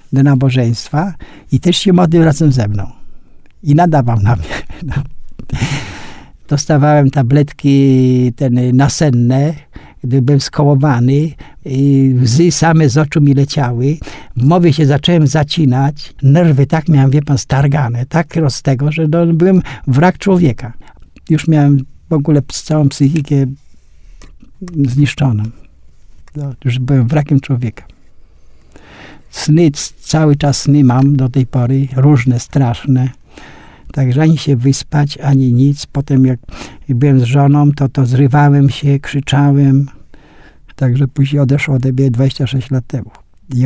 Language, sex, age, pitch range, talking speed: Polish, male, 60-79, 125-150 Hz, 125 wpm